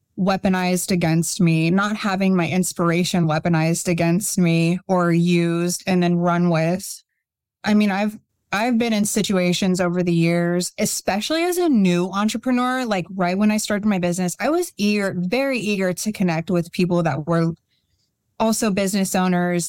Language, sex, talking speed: English, female, 160 wpm